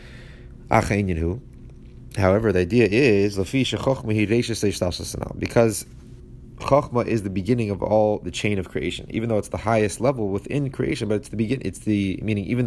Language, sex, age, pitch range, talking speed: English, male, 30-49, 95-120 Hz, 145 wpm